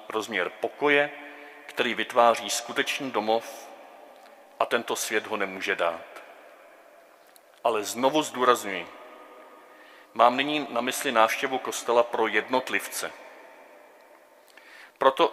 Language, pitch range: Czech, 105-130 Hz